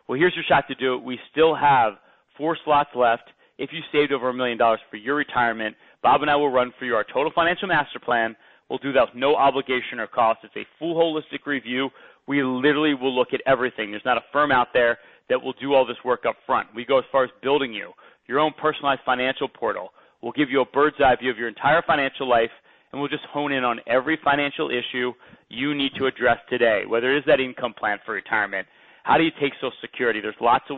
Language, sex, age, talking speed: English, male, 30-49, 240 wpm